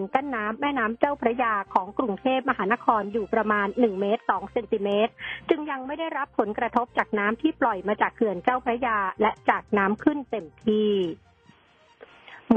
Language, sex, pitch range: Thai, female, 205-250 Hz